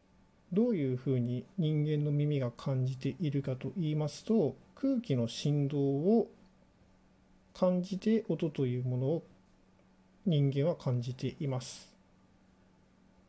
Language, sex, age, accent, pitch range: Japanese, male, 40-59, native, 125-185 Hz